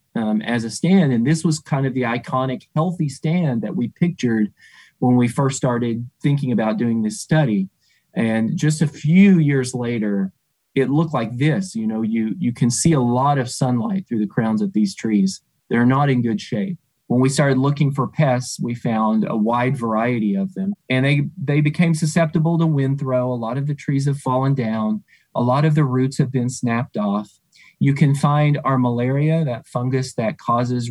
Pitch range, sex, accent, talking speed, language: 120-150 Hz, male, American, 200 wpm, English